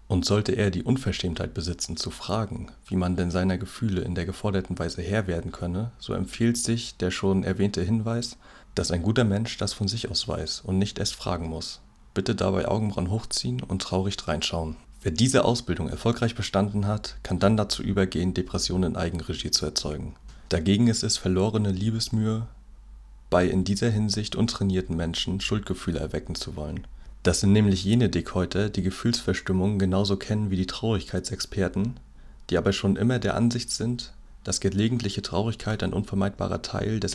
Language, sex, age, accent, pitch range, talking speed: German, male, 30-49, German, 90-110 Hz, 170 wpm